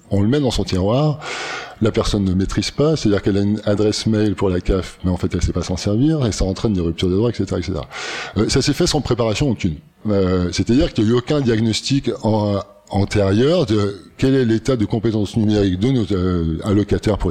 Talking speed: 225 wpm